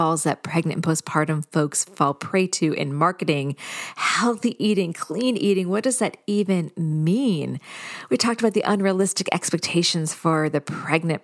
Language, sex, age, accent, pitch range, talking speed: English, female, 40-59, American, 155-205 Hz, 155 wpm